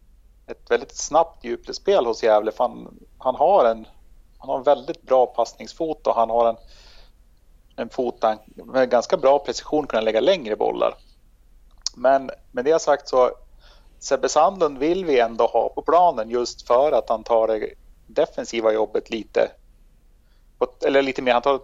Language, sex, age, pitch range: Swedish, male, 30-49, 105-140 Hz